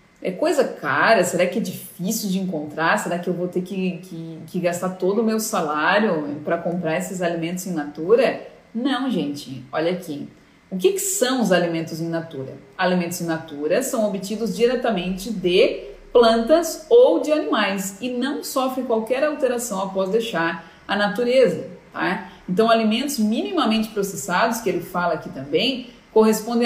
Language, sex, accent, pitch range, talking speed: Portuguese, female, Brazilian, 180-240 Hz, 155 wpm